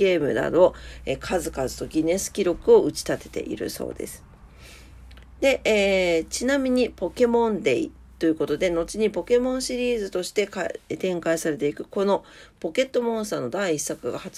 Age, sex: 40-59, female